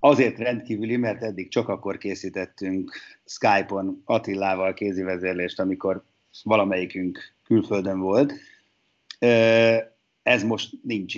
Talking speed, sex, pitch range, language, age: 90 wpm, male, 95-105 Hz, Hungarian, 30-49